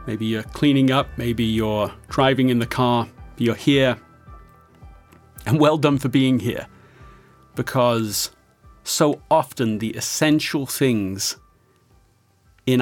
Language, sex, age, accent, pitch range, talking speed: English, male, 40-59, British, 115-145 Hz, 115 wpm